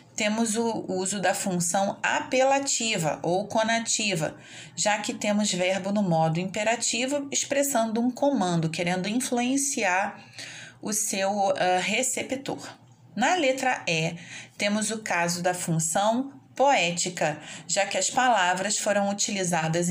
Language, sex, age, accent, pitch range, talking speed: Portuguese, female, 30-49, Brazilian, 175-235 Hz, 115 wpm